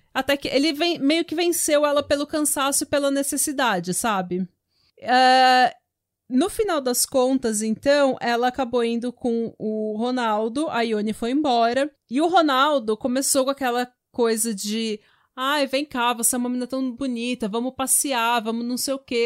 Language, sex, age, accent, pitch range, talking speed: Portuguese, female, 30-49, Brazilian, 225-275 Hz, 160 wpm